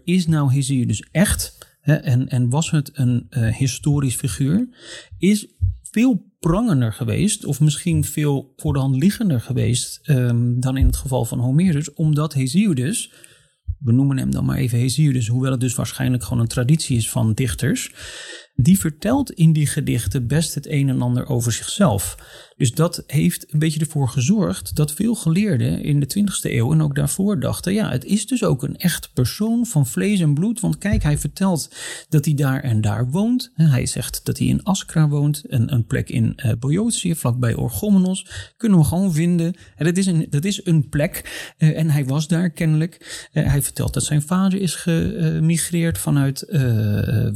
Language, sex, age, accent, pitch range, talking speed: Dutch, male, 30-49, Dutch, 130-175 Hz, 185 wpm